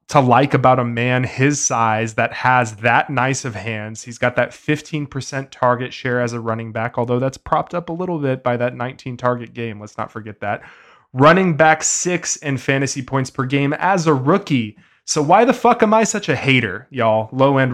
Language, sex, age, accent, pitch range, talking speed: English, male, 20-39, American, 120-150 Hz, 210 wpm